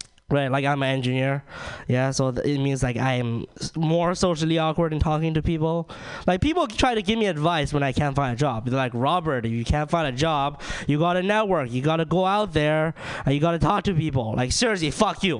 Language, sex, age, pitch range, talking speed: English, male, 20-39, 145-205 Hz, 225 wpm